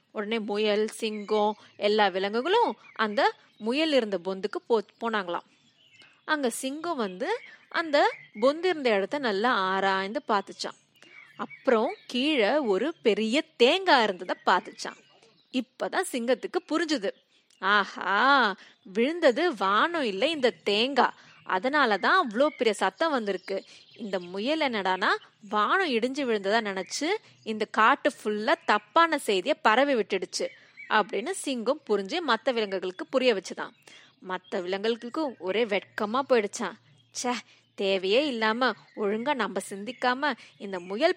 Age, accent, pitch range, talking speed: 30-49, native, 205-295 Hz, 70 wpm